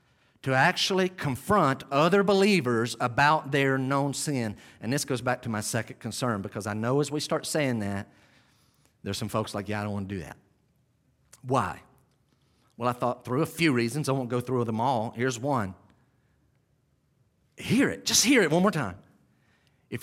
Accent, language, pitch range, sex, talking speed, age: American, English, 120-145 Hz, male, 185 wpm, 40-59